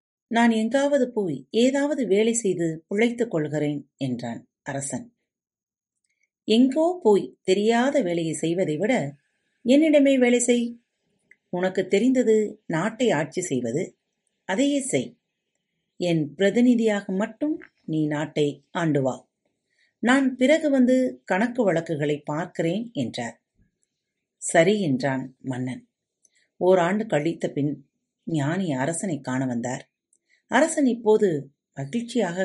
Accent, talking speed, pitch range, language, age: native, 95 wpm, 160-240 Hz, Tamil, 40-59